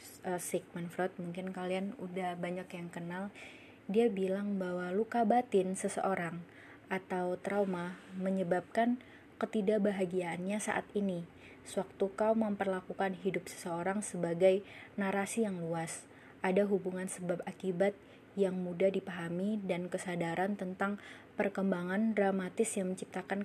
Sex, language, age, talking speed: female, Indonesian, 20-39, 105 wpm